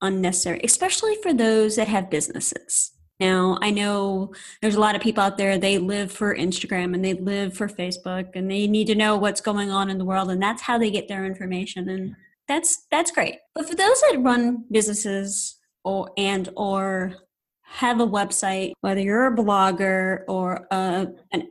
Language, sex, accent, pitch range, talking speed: English, female, American, 195-260 Hz, 185 wpm